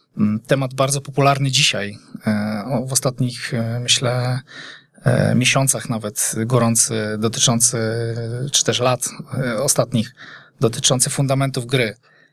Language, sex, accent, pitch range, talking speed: Polish, male, native, 115-140 Hz, 90 wpm